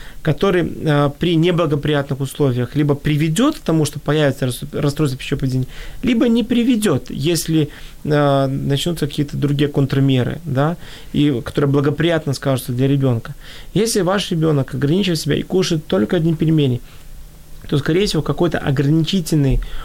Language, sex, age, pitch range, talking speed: Ukrainian, male, 20-39, 140-170 Hz, 125 wpm